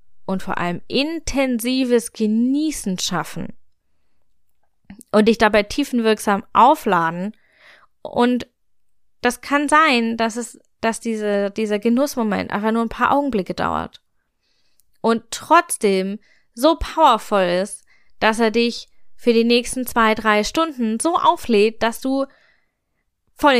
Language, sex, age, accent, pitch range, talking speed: German, female, 10-29, German, 180-250 Hz, 115 wpm